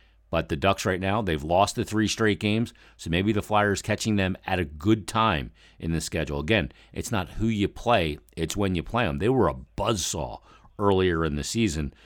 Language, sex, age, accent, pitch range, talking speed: English, male, 50-69, American, 80-100 Hz, 210 wpm